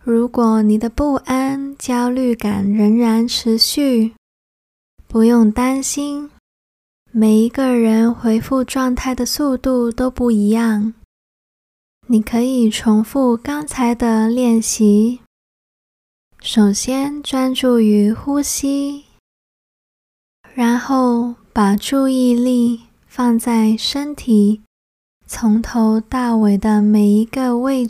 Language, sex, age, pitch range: Chinese, female, 20-39, 220-255 Hz